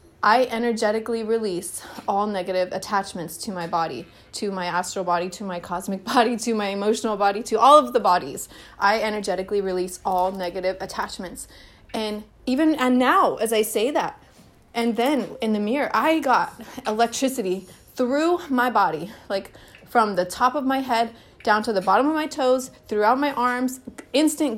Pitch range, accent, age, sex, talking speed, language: 205-255 Hz, American, 30-49, female, 170 wpm, English